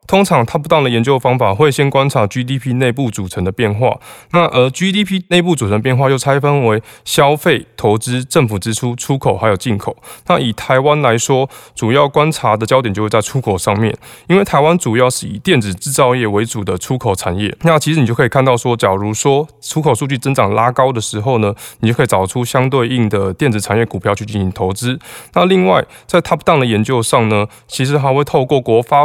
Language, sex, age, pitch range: Chinese, male, 20-39, 110-145 Hz